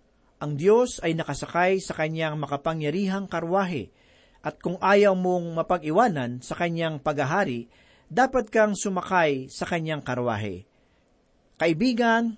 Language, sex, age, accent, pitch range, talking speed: Filipino, male, 40-59, native, 155-215 Hz, 110 wpm